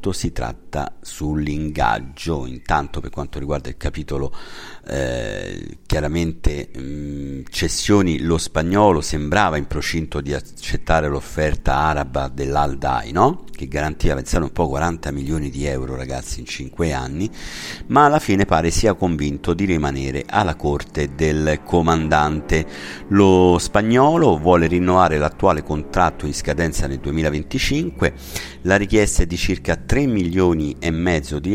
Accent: native